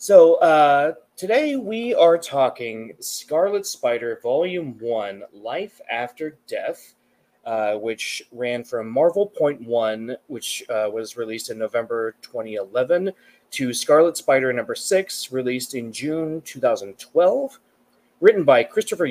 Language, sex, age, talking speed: English, male, 30-49, 120 wpm